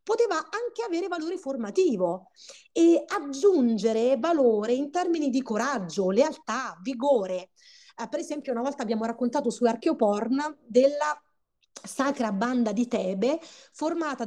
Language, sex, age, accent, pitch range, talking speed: Italian, female, 30-49, native, 220-295 Hz, 120 wpm